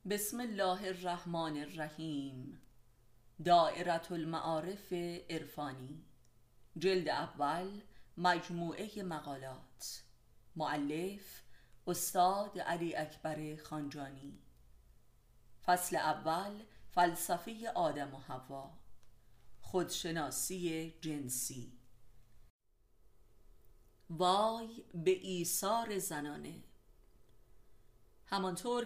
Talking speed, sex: 60 wpm, female